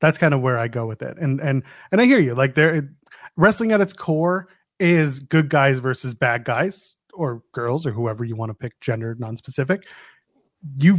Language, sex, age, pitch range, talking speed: English, male, 20-39, 135-175 Hz, 200 wpm